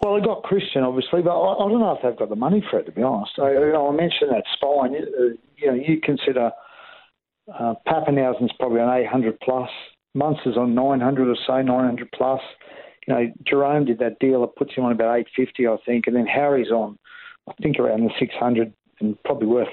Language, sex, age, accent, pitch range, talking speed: English, male, 50-69, Australian, 115-140 Hz, 230 wpm